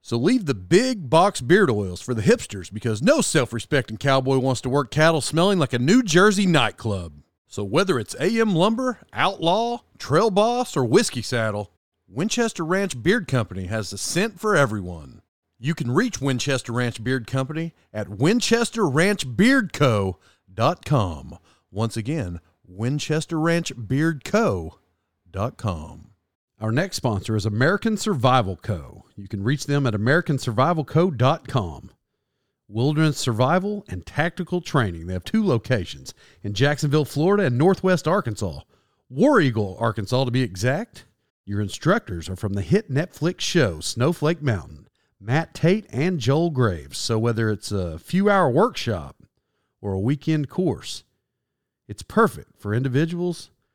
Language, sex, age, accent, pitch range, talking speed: English, male, 40-59, American, 105-165 Hz, 135 wpm